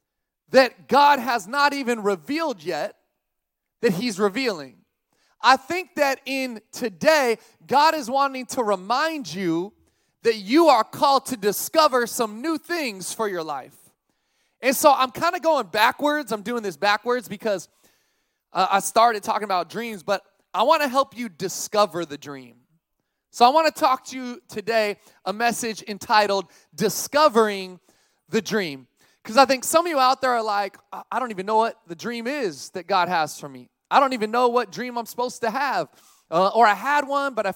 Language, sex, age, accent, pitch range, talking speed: English, male, 20-39, American, 195-265 Hz, 180 wpm